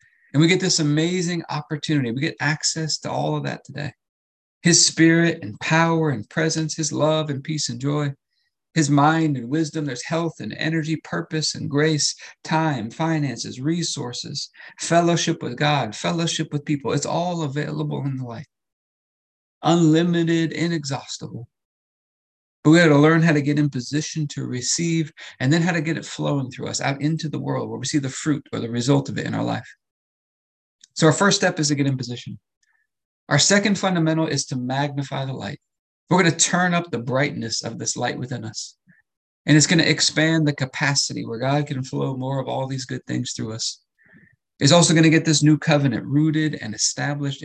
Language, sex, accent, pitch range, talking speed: English, male, American, 135-160 Hz, 190 wpm